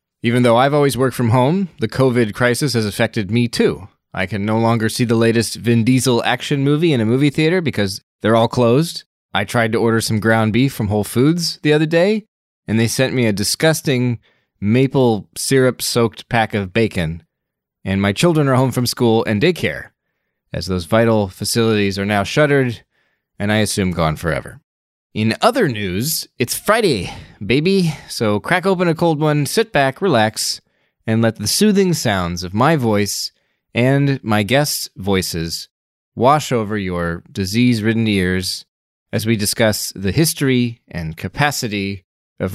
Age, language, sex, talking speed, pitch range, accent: 20-39, English, male, 165 wpm, 105-135 Hz, American